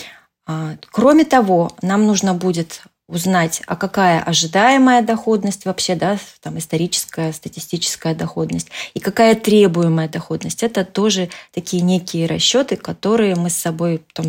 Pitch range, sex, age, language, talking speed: 165-215 Hz, female, 30-49, Russian, 120 wpm